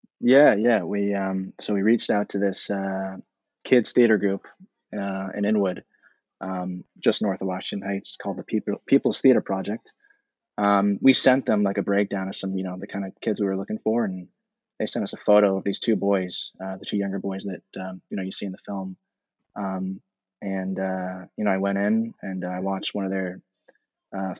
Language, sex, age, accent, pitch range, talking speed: English, male, 20-39, American, 95-105 Hz, 215 wpm